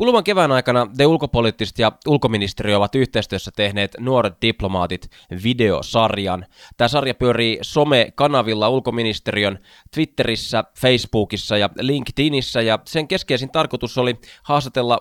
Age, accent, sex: 20-39, native, male